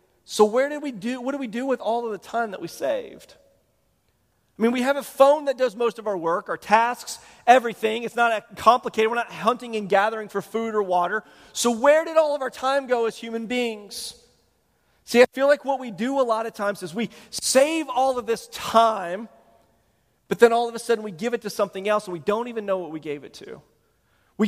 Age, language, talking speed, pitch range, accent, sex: 40-59, English, 240 wpm, 195-245 Hz, American, male